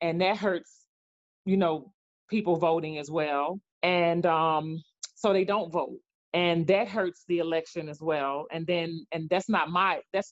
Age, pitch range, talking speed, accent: 40-59, 160-190 Hz, 170 wpm, American